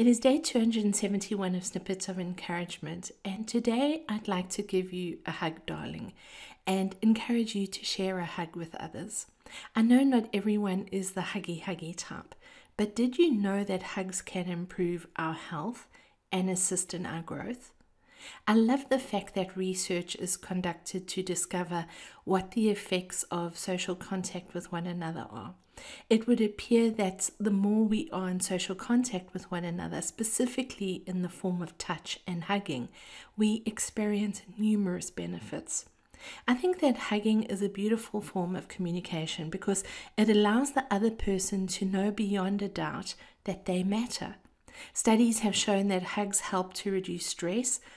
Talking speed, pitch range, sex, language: 165 wpm, 180-220 Hz, female, English